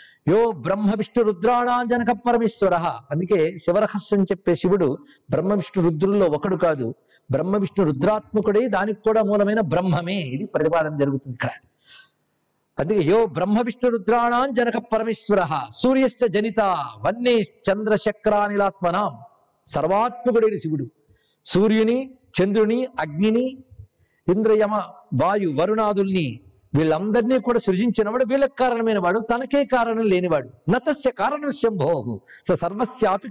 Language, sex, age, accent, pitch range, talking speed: Telugu, male, 50-69, native, 175-235 Hz, 105 wpm